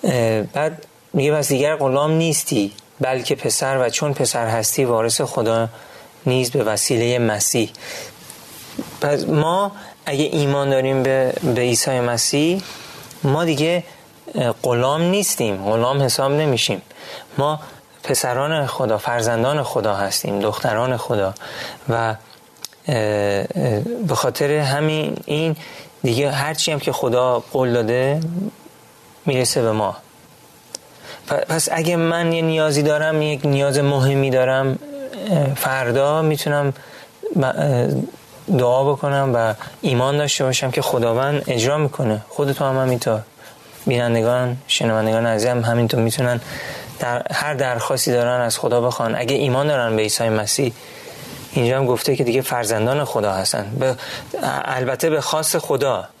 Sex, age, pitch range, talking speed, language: male, 30-49, 120-150 Hz, 120 wpm, Persian